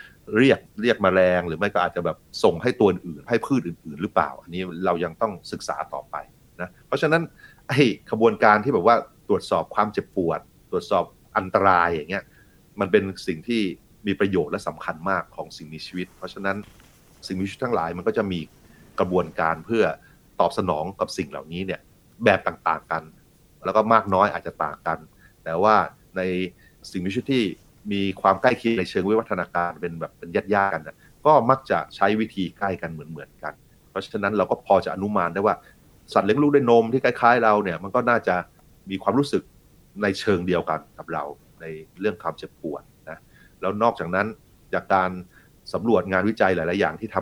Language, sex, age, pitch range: Thai, male, 30-49, 90-110 Hz